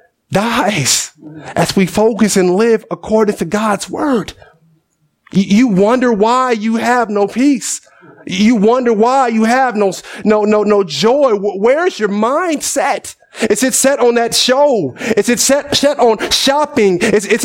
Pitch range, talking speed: 205-260 Hz, 155 wpm